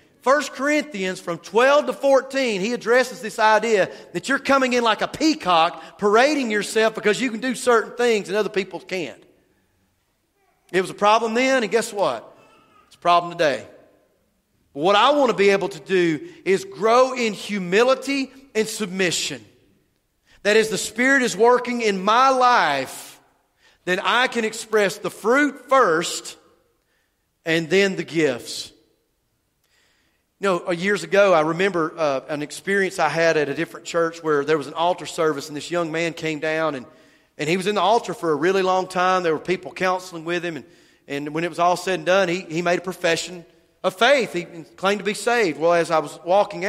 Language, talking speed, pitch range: English, 190 wpm, 170-230 Hz